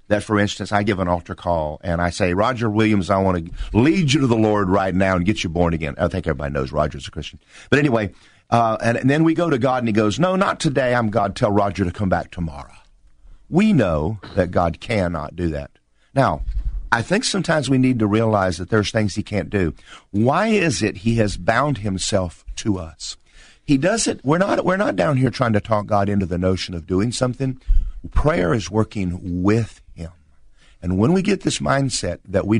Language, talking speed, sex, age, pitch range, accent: English, 220 wpm, male, 50-69, 85-110 Hz, American